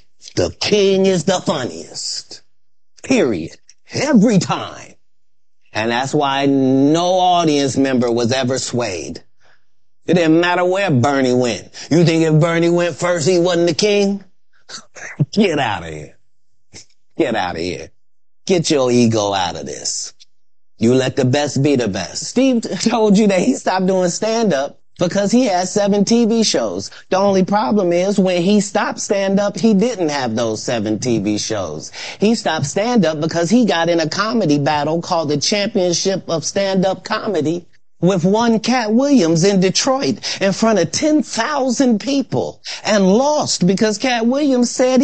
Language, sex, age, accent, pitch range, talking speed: English, male, 30-49, American, 150-225 Hz, 155 wpm